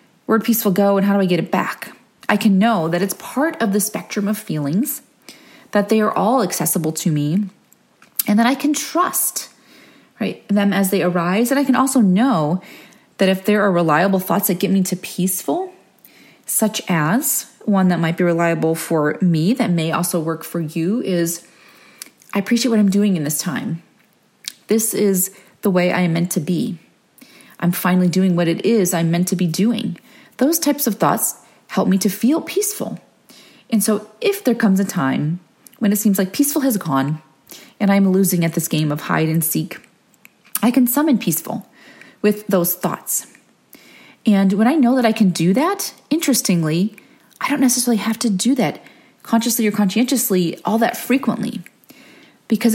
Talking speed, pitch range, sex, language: 185 wpm, 180-245 Hz, female, English